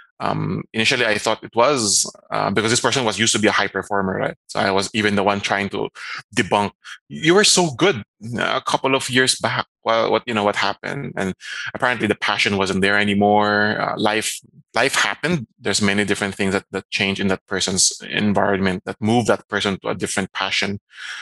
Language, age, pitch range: English, 20-39, 100-115 Hz